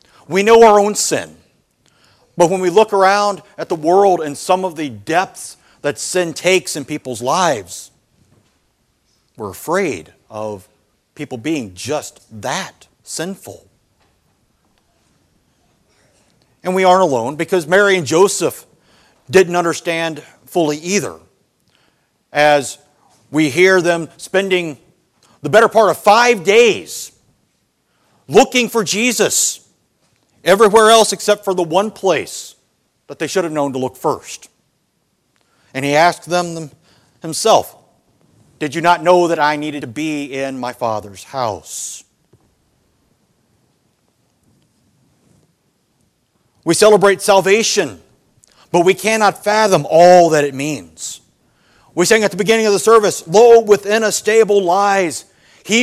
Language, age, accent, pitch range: English, 50-69, American, 150-200 Hz